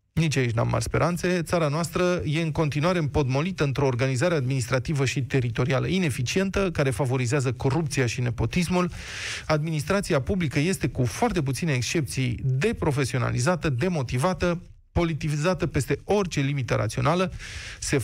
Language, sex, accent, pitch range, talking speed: Romanian, male, native, 130-170 Hz, 125 wpm